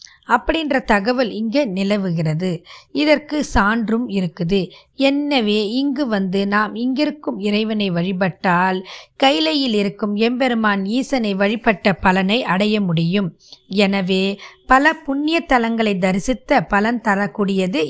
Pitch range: 195-260 Hz